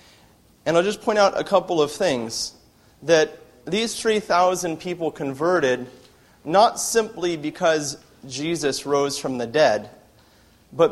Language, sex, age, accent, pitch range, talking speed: English, male, 30-49, American, 135-165 Hz, 125 wpm